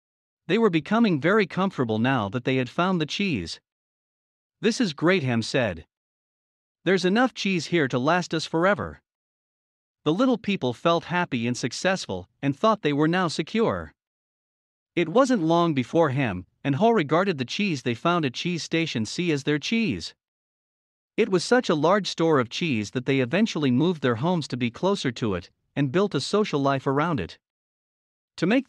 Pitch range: 130-185 Hz